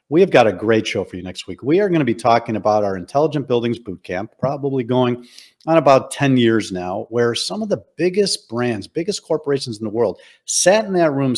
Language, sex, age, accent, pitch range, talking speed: English, male, 50-69, American, 110-140 Hz, 230 wpm